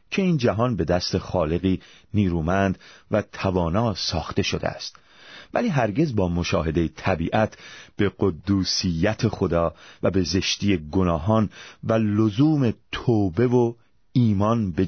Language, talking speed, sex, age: Persian, 120 wpm, male, 40-59